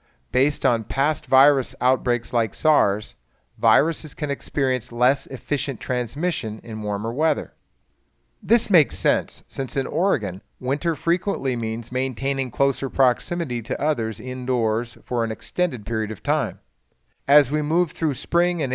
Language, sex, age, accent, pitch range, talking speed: English, male, 40-59, American, 115-140 Hz, 140 wpm